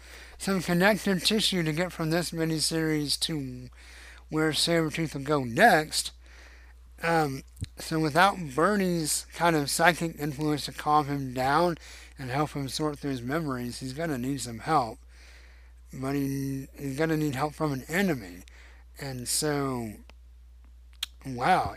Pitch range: 120-165 Hz